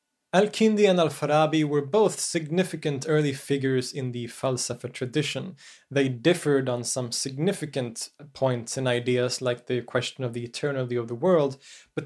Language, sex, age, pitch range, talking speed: English, male, 20-39, 130-160 Hz, 150 wpm